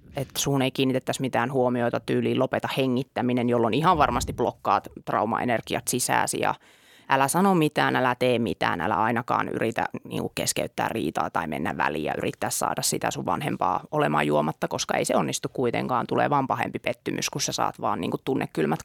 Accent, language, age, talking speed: native, Finnish, 30-49, 170 wpm